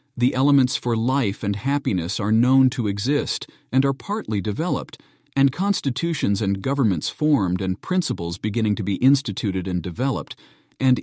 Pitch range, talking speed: 105-140 Hz, 150 wpm